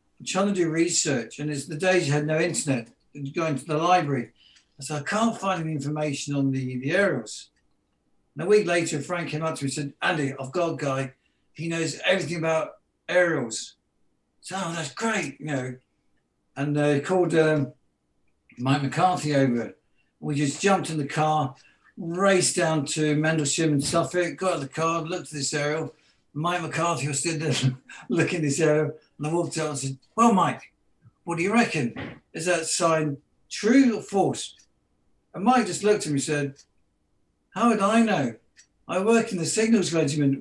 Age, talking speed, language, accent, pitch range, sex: 60-79, 190 wpm, English, British, 140-180 Hz, male